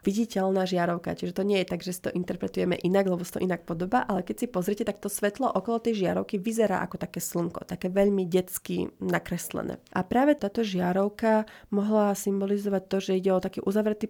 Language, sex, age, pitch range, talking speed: Slovak, female, 30-49, 180-200 Hz, 195 wpm